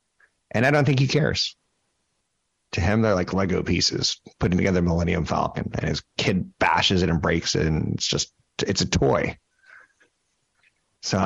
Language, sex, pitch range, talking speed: English, male, 90-115 Hz, 165 wpm